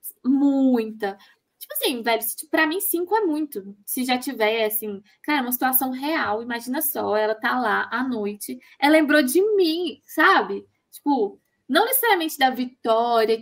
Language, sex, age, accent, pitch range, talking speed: Portuguese, female, 10-29, Brazilian, 225-290 Hz, 150 wpm